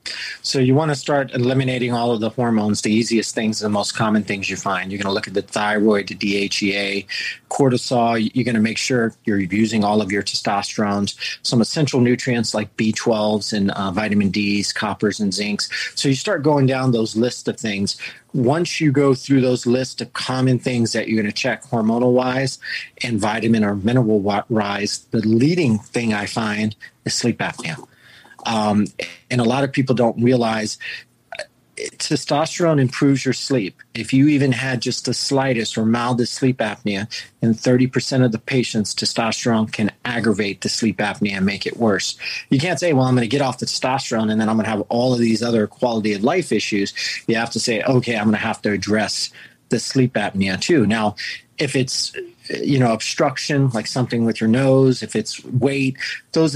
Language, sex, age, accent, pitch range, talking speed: English, male, 30-49, American, 105-130 Hz, 195 wpm